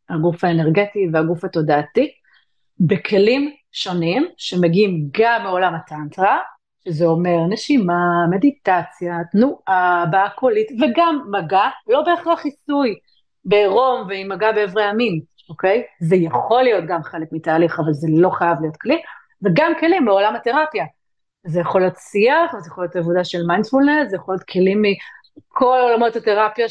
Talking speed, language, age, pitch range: 135 wpm, Hebrew, 30-49, 175-240 Hz